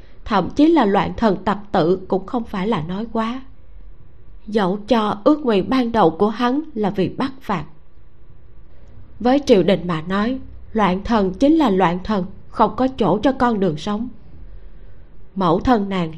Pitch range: 185-255 Hz